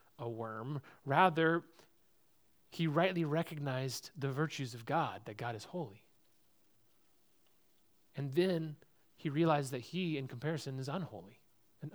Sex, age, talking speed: male, 30-49, 125 wpm